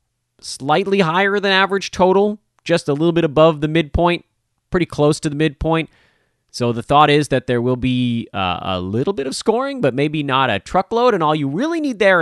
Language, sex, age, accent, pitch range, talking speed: English, male, 30-49, American, 120-170 Hz, 205 wpm